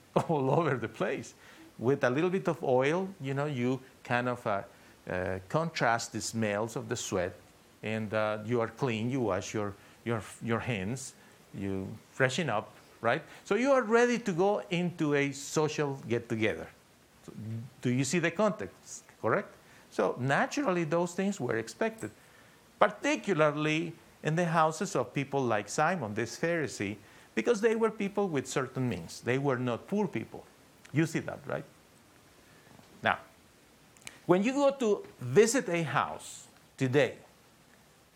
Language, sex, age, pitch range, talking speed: English, male, 50-69, 115-170 Hz, 150 wpm